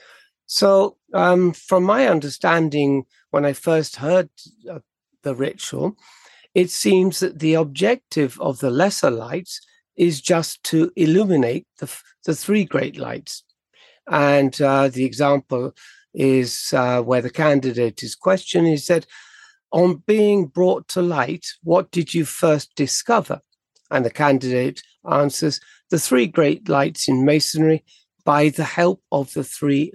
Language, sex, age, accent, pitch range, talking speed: English, male, 60-79, British, 135-175 Hz, 140 wpm